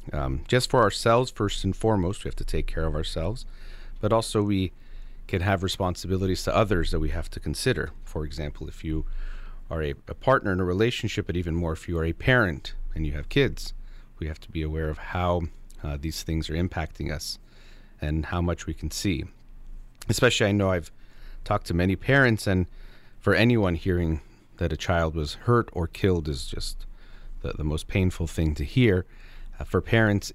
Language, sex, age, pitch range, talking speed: English, male, 30-49, 75-100 Hz, 195 wpm